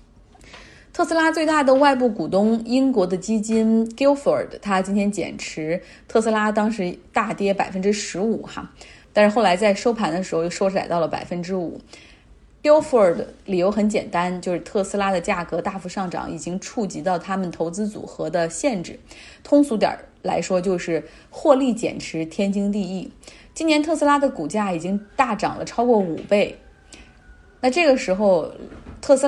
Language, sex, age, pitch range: Chinese, female, 20-39, 180-240 Hz